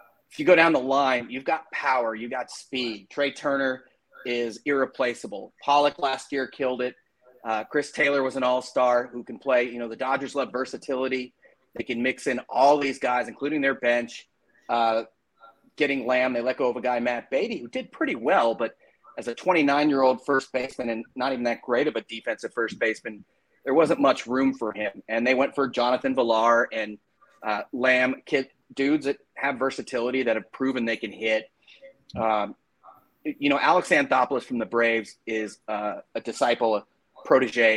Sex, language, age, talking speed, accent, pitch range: male, English, 30-49, 185 wpm, American, 115-135 Hz